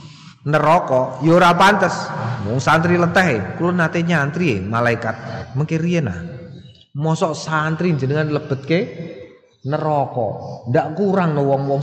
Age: 30-49